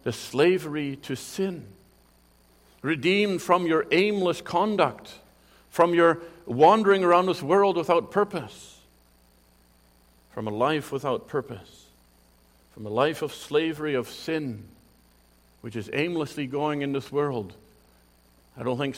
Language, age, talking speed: English, 50-69, 125 wpm